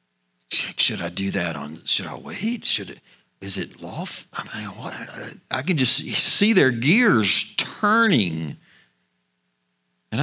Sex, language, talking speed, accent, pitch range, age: male, English, 110 wpm, American, 90-120 Hz, 50-69